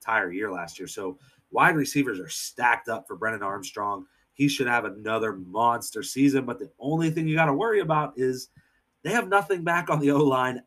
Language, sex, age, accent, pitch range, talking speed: English, male, 30-49, American, 115-140 Hz, 195 wpm